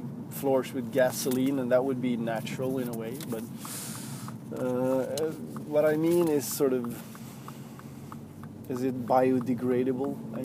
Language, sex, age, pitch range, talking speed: English, male, 20-39, 125-160 Hz, 130 wpm